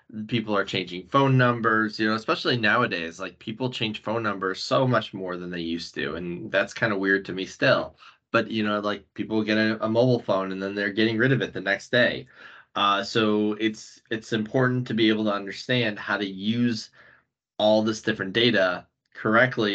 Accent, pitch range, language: American, 100-115 Hz, English